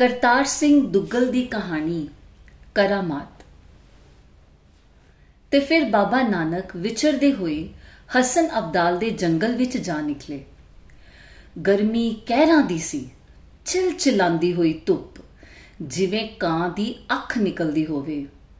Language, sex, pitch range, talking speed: Punjabi, female, 155-255 Hz, 105 wpm